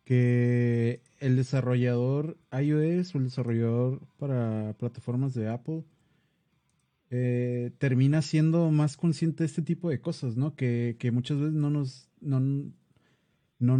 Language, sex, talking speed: English, male, 120 wpm